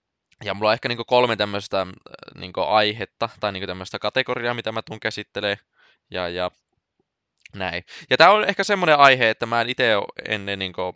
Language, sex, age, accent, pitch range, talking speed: Finnish, male, 20-39, native, 100-125 Hz, 165 wpm